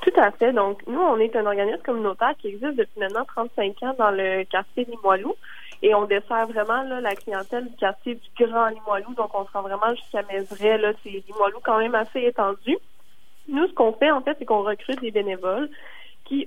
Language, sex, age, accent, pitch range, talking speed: French, female, 20-39, Canadian, 200-245 Hz, 215 wpm